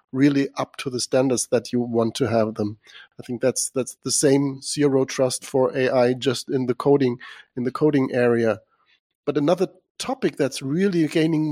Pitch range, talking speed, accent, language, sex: 135-165 Hz, 180 wpm, German, English, male